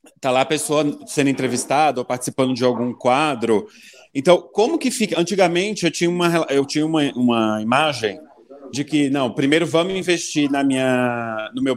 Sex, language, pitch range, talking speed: male, Portuguese, 125-170 Hz, 175 wpm